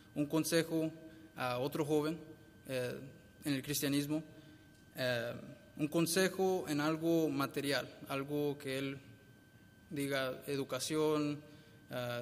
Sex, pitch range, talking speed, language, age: male, 135-155 Hz, 105 wpm, English, 20-39